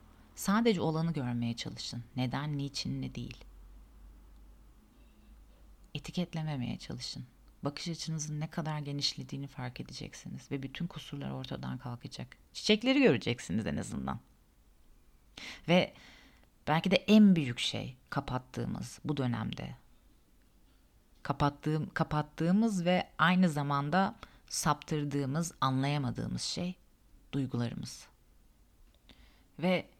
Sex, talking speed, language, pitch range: female, 90 wpm, Turkish, 120-185 Hz